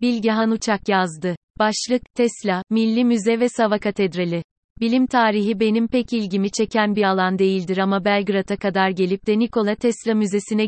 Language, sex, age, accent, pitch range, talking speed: Turkish, female, 30-49, native, 195-225 Hz, 150 wpm